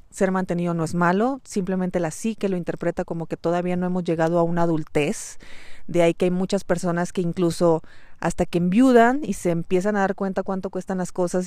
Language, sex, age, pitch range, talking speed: Spanish, female, 30-49, 165-195 Hz, 210 wpm